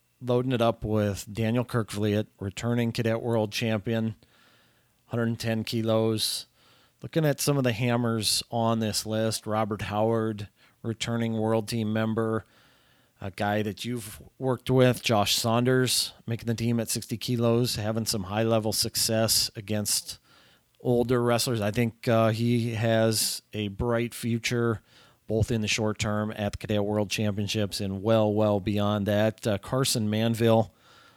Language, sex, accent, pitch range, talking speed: English, male, American, 105-115 Hz, 145 wpm